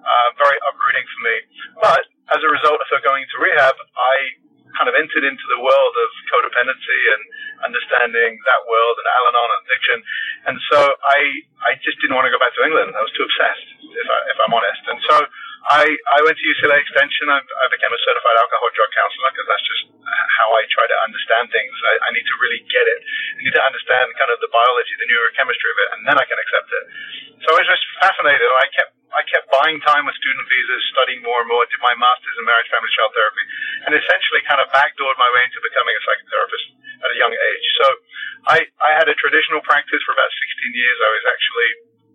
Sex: male